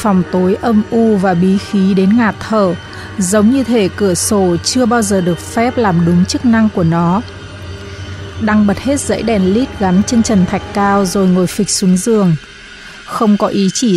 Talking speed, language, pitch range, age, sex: 200 wpm, Vietnamese, 185-225 Hz, 20-39, female